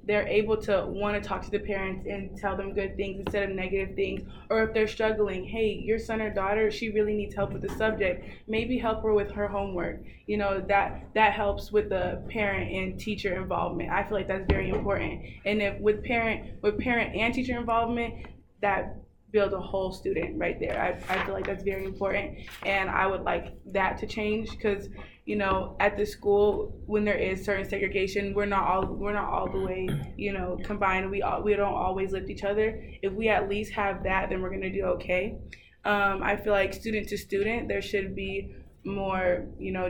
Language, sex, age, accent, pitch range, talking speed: English, female, 20-39, American, 190-210 Hz, 210 wpm